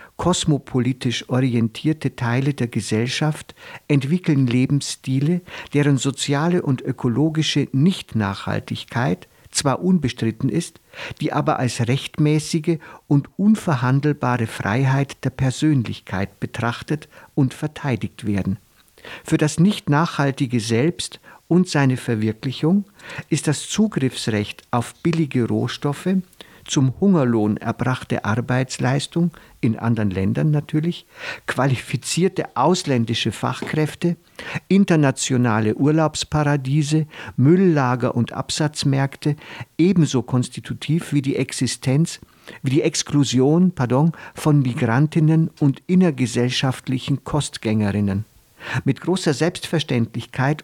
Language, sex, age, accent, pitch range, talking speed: German, male, 50-69, German, 125-160 Hz, 90 wpm